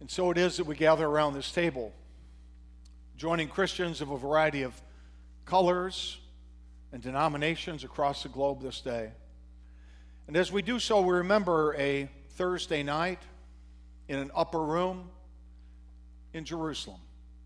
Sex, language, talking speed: male, English, 140 wpm